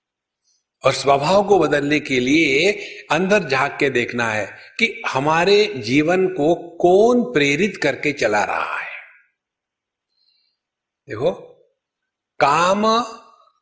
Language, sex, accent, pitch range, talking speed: Hindi, male, native, 145-235 Hz, 100 wpm